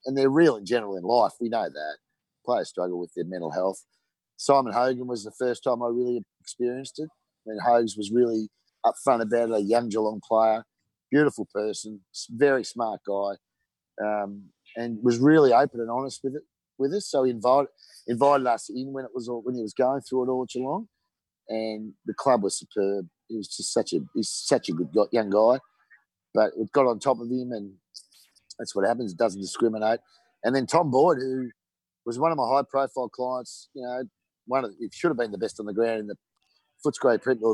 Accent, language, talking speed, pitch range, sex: Australian, English, 215 wpm, 110-135 Hz, male